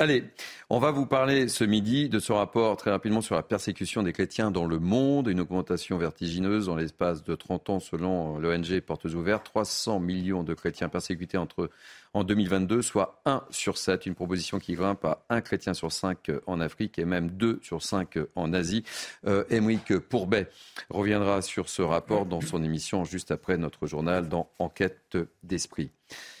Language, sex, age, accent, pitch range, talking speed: French, male, 40-59, French, 90-110 Hz, 180 wpm